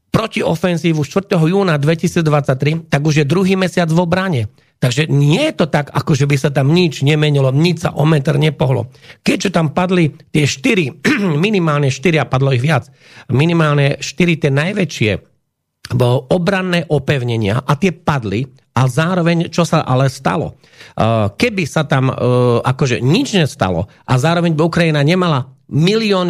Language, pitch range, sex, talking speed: Slovak, 135-165 Hz, male, 150 wpm